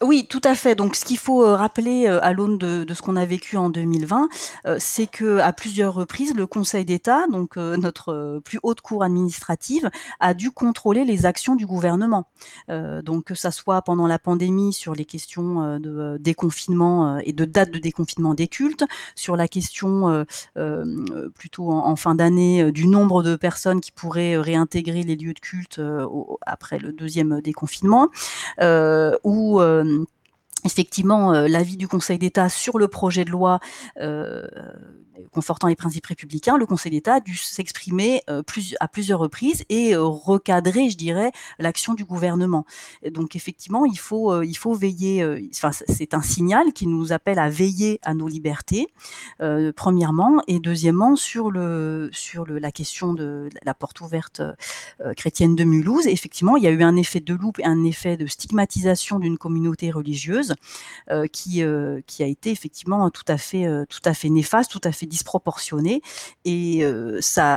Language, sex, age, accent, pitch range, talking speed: French, female, 30-49, French, 160-200 Hz, 185 wpm